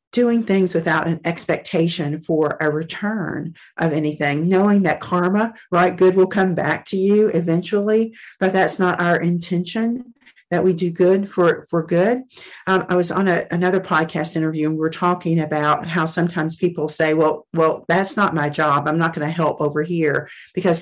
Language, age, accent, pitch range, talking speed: English, 50-69, American, 160-200 Hz, 180 wpm